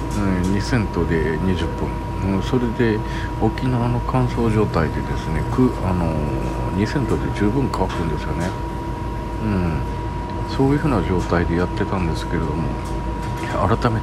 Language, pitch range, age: Japanese, 95-120 Hz, 50-69